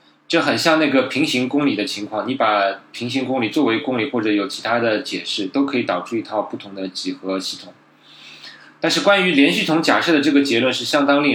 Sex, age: male, 20-39